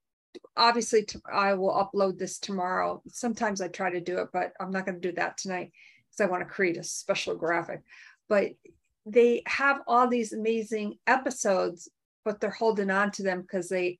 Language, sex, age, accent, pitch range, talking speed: English, female, 50-69, American, 180-215 Hz, 185 wpm